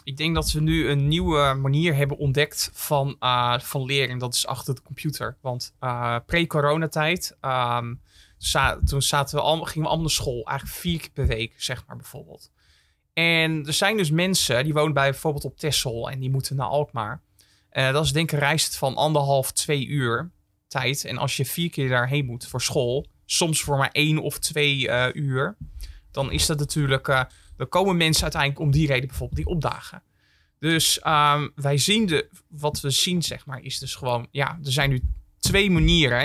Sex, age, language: male, 20-39, Dutch